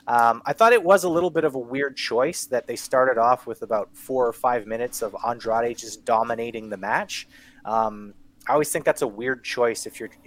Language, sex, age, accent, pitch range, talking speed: English, male, 30-49, American, 110-135 Hz, 220 wpm